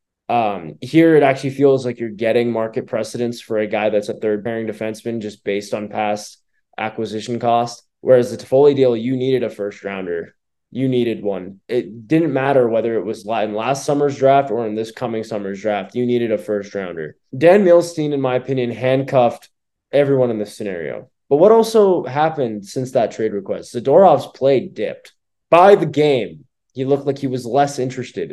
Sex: male